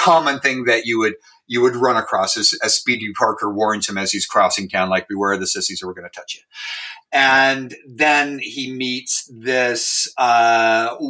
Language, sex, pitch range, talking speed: English, male, 110-150 Hz, 190 wpm